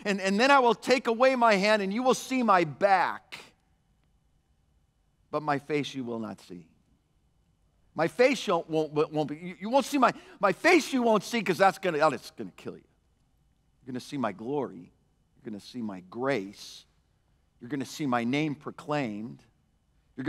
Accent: American